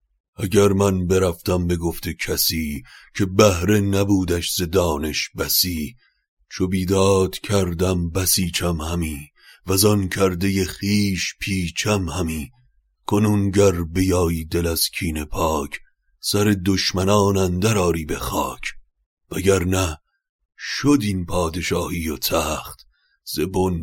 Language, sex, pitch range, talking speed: Persian, male, 80-95 Hz, 105 wpm